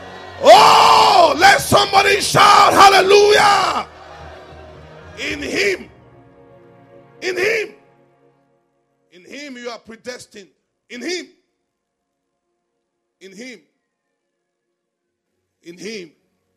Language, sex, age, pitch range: English, male, 50-69, 170-230 Hz